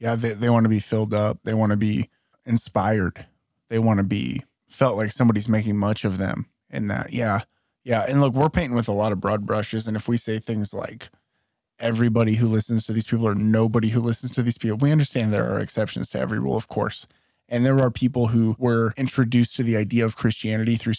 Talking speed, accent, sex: 230 wpm, American, male